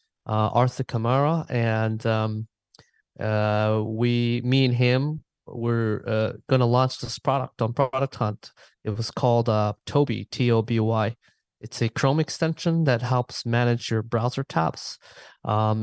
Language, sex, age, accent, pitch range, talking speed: English, male, 20-39, American, 115-135 Hz, 135 wpm